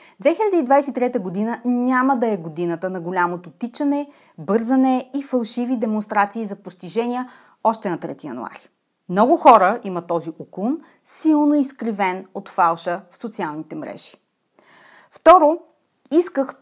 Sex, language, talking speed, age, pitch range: female, Bulgarian, 120 wpm, 30-49, 185-275 Hz